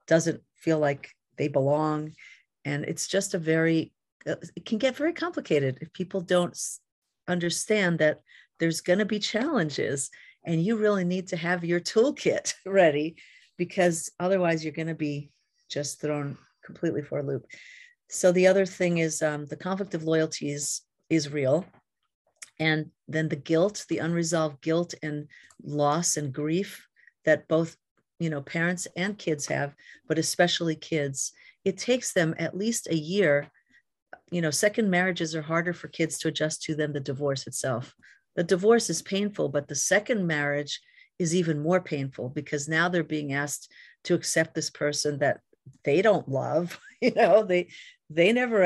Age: 50-69